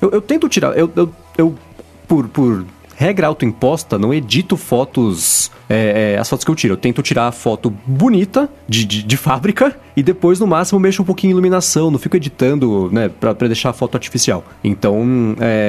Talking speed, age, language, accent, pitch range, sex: 185 wpm, 30-49, Portuguese, Brazilian, 120-175 Hz, male